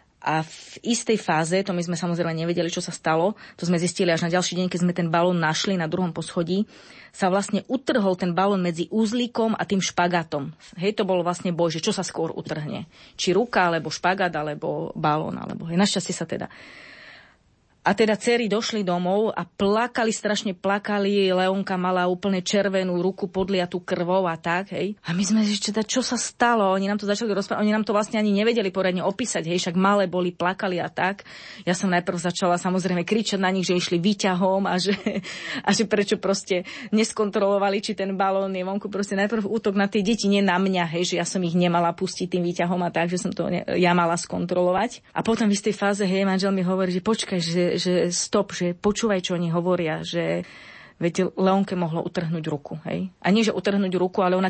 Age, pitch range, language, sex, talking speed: 30-49, 175-205 Hz, Slovak, female, 205 wpm